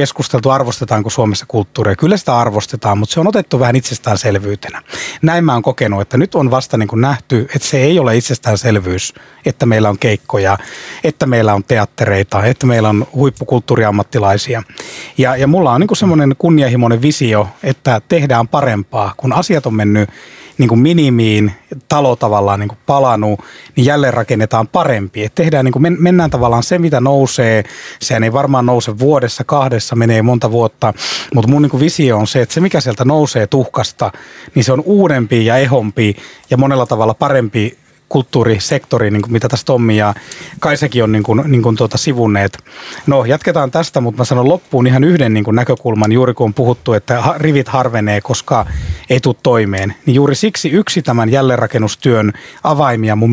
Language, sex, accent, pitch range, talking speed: Finnish, male, native, 110-140 Hz, 160 wpm